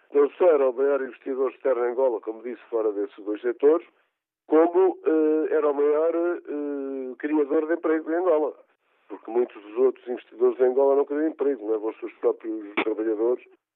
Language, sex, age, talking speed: Portuguese, male, 50-69, 170 wpm